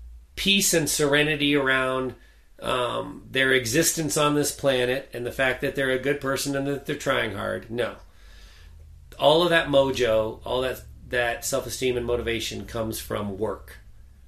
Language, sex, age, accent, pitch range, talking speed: English, male, 30-49, American, 100-135 Hz, 155 wpm